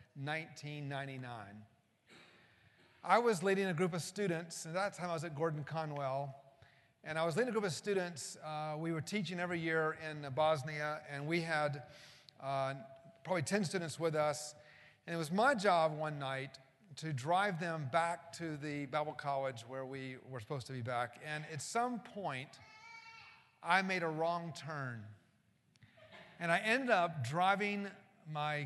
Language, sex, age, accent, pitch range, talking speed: English, male, 40-59, American, 140-170 Hz, 160 wpm